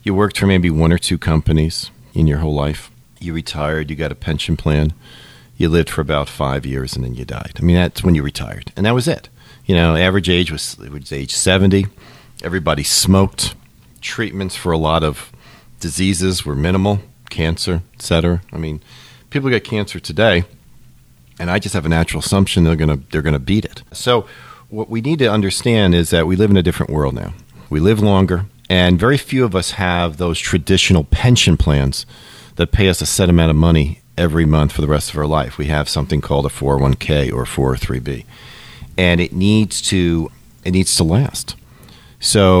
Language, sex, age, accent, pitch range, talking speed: English, male, 40-59, American, 75-100 Hz, 200 wpm